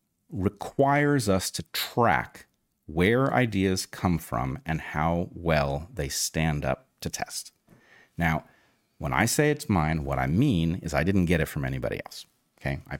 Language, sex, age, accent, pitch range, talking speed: English, male, 40-59, American, 80-115 Hz, 160 wpm